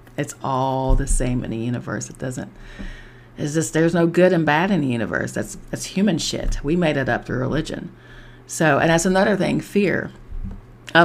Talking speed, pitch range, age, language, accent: 195 wpm, 120-155 Hz, 40-59, English, American